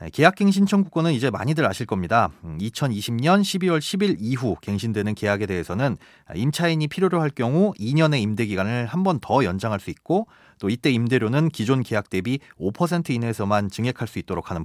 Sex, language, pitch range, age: male, Korean, 105-155 Hz, 30-49